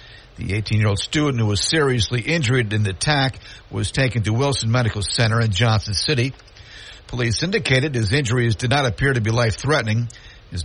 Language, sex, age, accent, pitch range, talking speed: English, male, 50-69, American, 105-130 Hz, 170 wpm